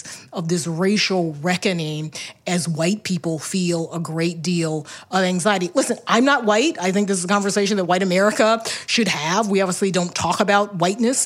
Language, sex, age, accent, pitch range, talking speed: English, female, 30-49, American, 170-215 Hz, 180 wpm